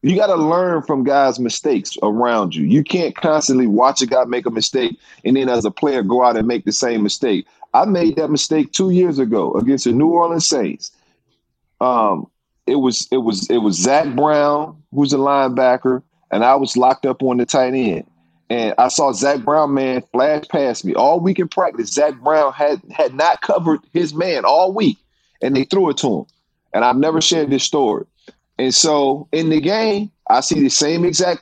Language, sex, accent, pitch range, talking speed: English, male, American, 125-155 Hz, 205 wpm